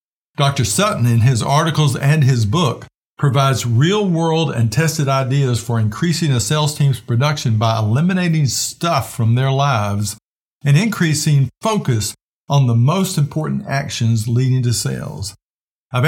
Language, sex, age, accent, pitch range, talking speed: English, male, 50-69, American, 115-160 Hz, 140 wpm